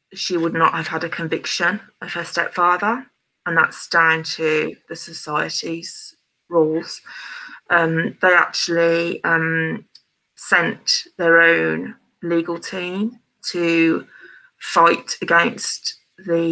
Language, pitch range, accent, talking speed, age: English, 165-185 Hz, British, 110 wpm, 20-39